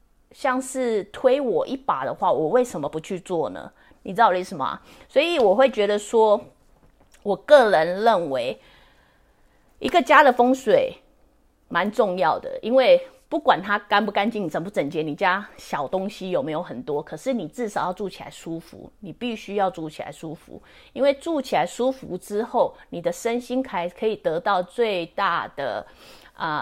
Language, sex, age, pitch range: English, female, 30-49, 180-255 Hz